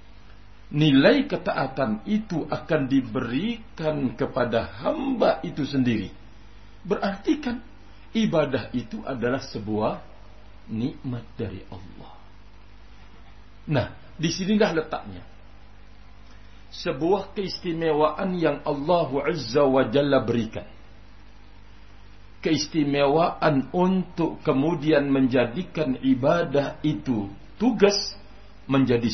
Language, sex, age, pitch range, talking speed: Indonesian, male, 60-79, 105-155 Hz, 70 wpm